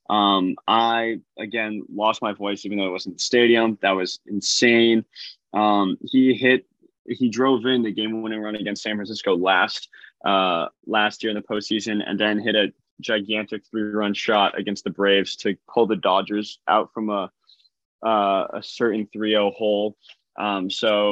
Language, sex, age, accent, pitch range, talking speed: English, male, 20-39, American, 100-115 Hz, 170 wpm